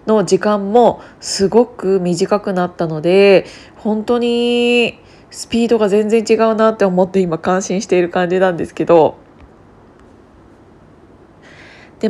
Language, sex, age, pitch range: Japanese, female, 20-39, 180-215 Hz